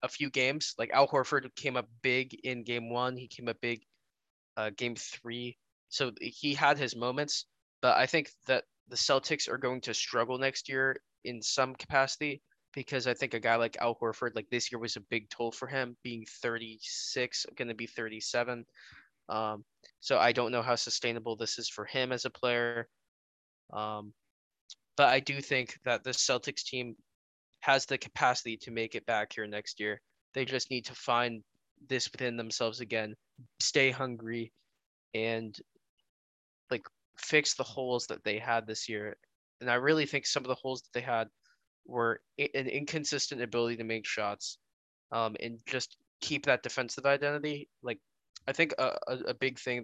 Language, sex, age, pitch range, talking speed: English, male, 10-29, 115-130 Hz, 180 wpm